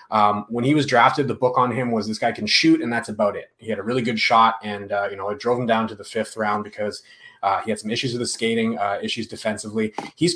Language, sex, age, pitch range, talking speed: English, male, 30-49, 110-130 Hz, 285 wpm